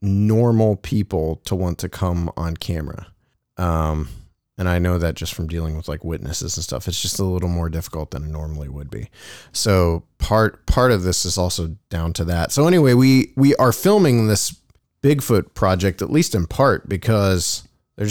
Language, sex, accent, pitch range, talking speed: English, male, American, 90-110 Hz, 190 wpm